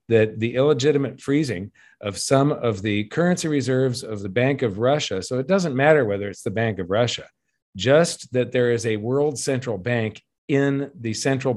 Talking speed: 185 wpm